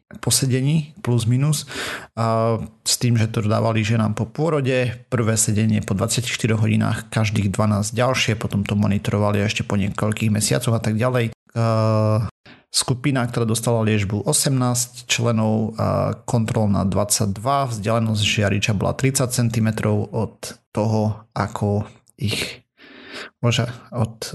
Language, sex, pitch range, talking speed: Slovak, male, 110-125 Hz, 120 wpm